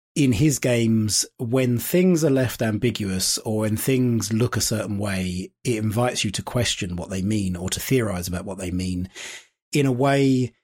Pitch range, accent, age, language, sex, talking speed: 100-125 Hz, British, 30-49, English, male, 185 wpm